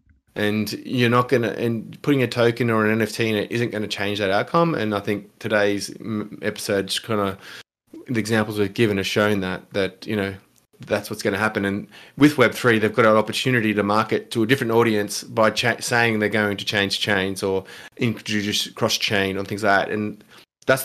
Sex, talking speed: male, 200 wpm